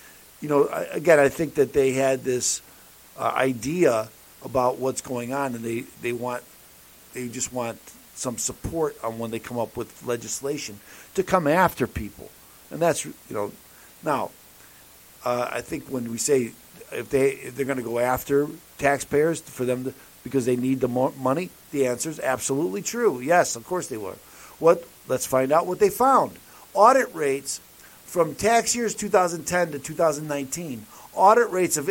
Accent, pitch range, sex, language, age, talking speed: American, 130-180 Hz, male, English, 50-69, 170 wpm